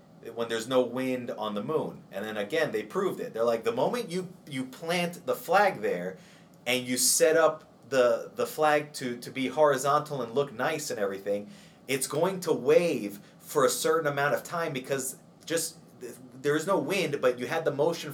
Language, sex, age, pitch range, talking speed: English, male, 30-49, 125-175 Hz, 200 wpm